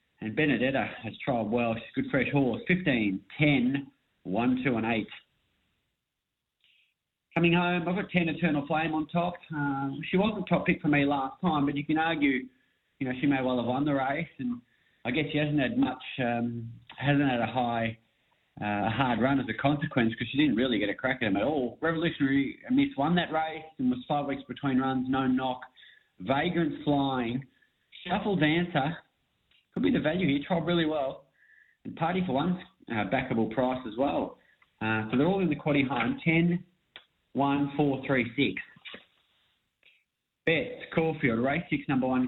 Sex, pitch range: male, 125-155 Hz